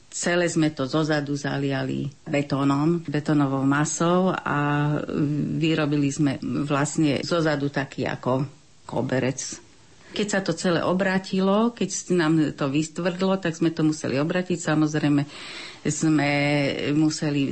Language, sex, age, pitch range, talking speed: Slovak, female, 50-69, 140-160 Hz, 115 wpm